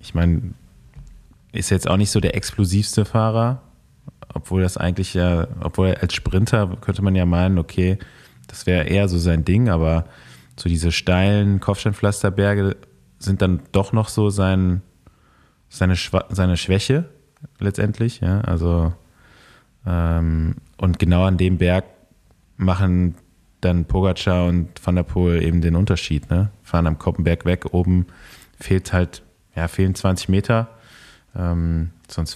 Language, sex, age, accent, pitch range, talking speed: German, male, 20-39, German, 85-100 Hz, 140 wpm